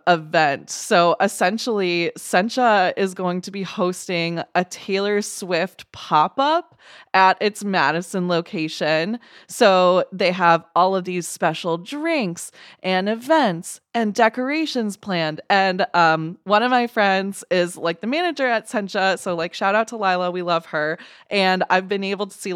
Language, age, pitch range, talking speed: English, 20-39, 170-225 Hz, 155 wpm